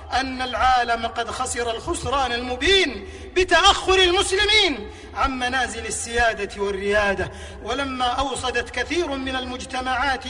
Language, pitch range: Arabic, 255-330 Hz